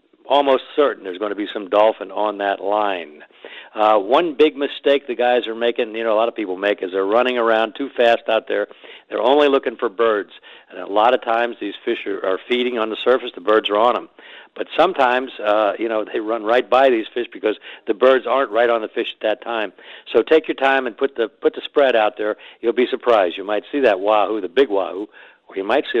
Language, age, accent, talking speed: English, 60-79, American, 245 wpm